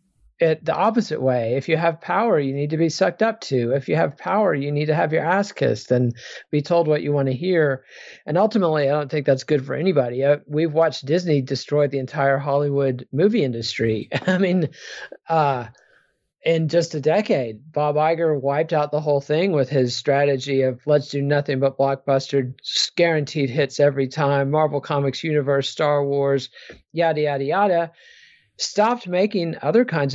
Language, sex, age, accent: English, male, 40-59, American